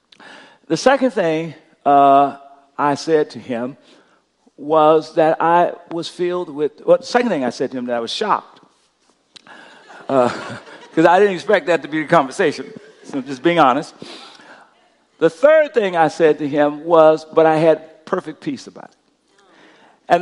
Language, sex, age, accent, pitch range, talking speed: English, male, 50-69, American, 155-230 Hz, 170 wpm